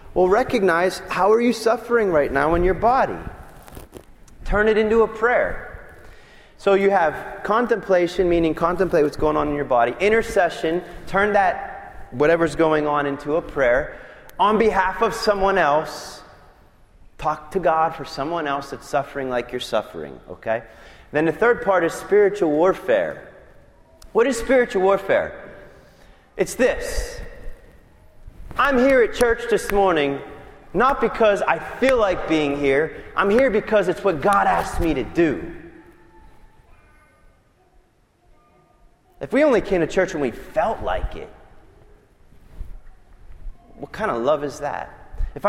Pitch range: 150-225 Hz